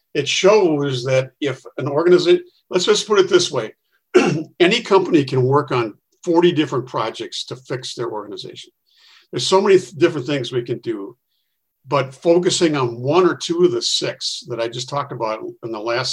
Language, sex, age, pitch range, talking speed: English, male, 50-69, 130-175 Hz, 185 wpm